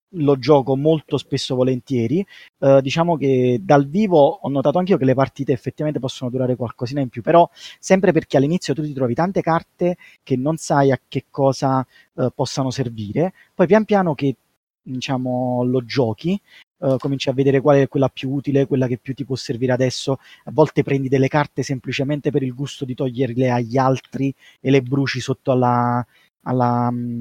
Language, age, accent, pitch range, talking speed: Italian, 30-49, native, 130-155 Hz, 180 wpm